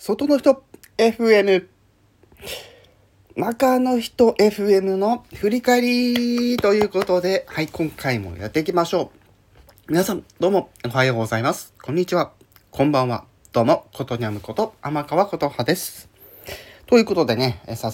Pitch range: 100-145 Hz